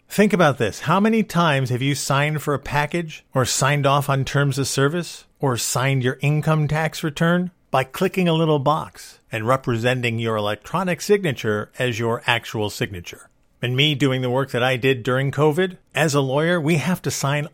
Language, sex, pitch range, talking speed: English, male, 125-175 Hz, 190 wpm